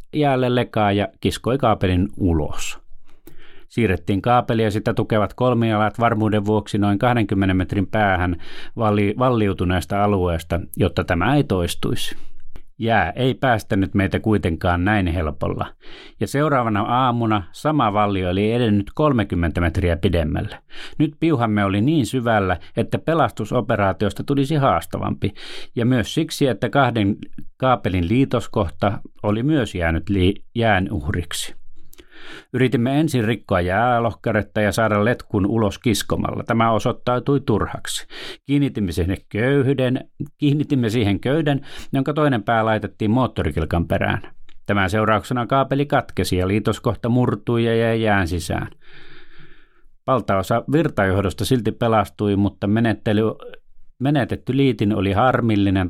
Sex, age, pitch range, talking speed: male, 30-49, 100-125 Hz, 115 wpm